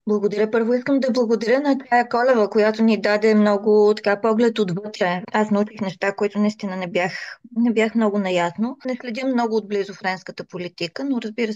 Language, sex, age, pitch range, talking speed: Bulgarian, female, 20-39, 205-255 Hz, 180 wpm